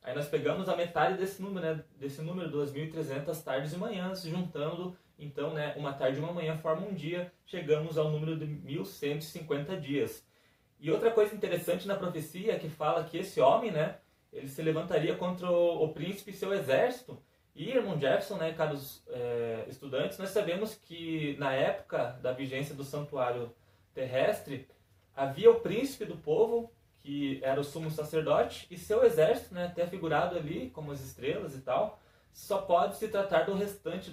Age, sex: 20-39, male